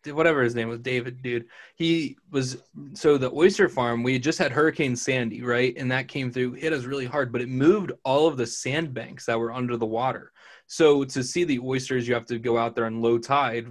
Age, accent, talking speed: 20-39, American, 230 wpm